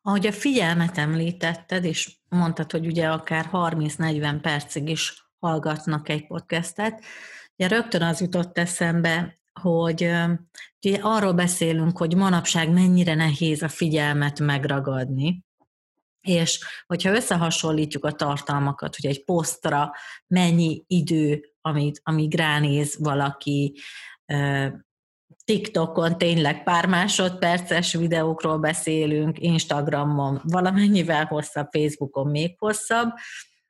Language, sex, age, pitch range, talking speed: Hungarian, female, 30-49, 150-175 Hz, 100 wpm